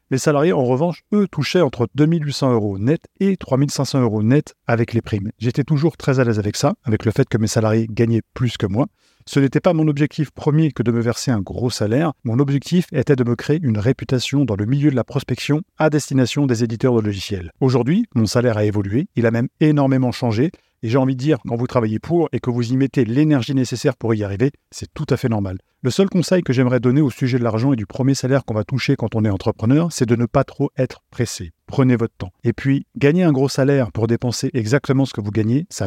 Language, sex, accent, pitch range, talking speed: French, male, French, 115-145 Hz, 245 wpm